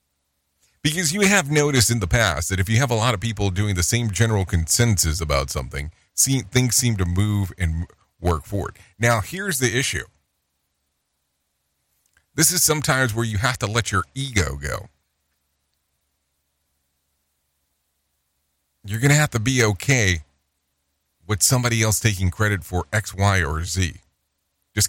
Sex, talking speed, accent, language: male, 150 wpm, American, English